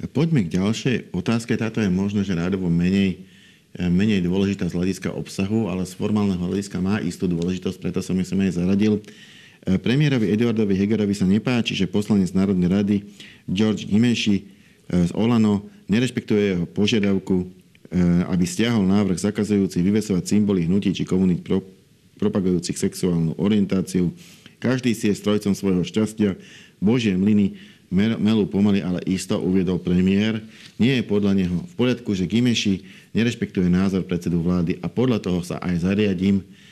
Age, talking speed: 50-69, 145 wpm